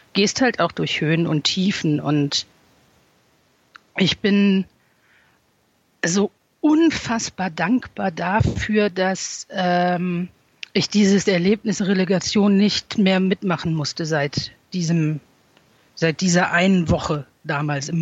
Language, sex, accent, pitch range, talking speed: German, female, German, 165-200 Hz, 105 wpm